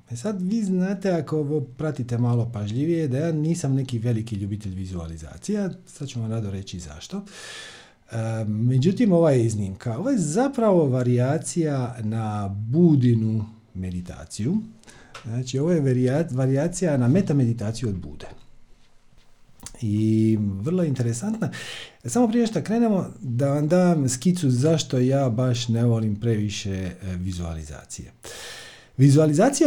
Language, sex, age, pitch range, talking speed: Croatian, male, 50-69, 110-165 Hz, 115 wpm